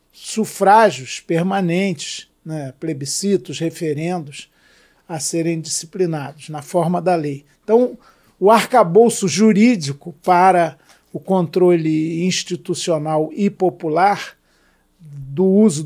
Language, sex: Portuguese, male